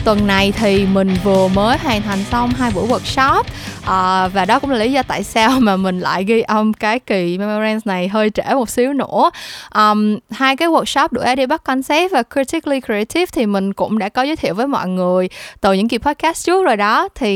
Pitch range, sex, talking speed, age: 200-265 Hz, female, 220 wpm, 20-39